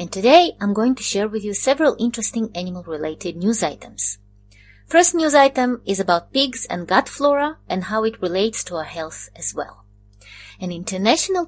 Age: 30-49